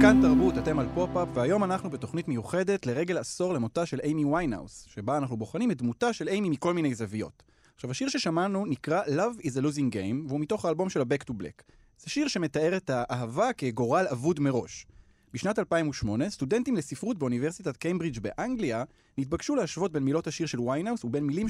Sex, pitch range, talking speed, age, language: male, 115-170 Hz, 180 wpm, 30-49, Hebrew